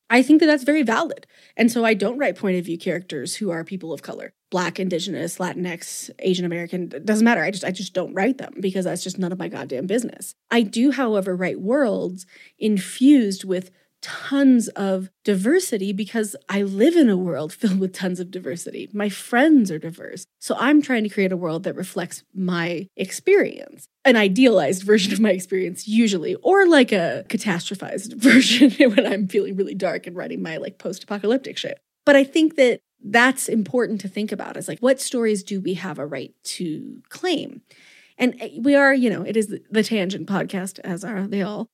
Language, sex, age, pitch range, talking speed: English, female, 30-49, 185-255 Hz, 195 wpm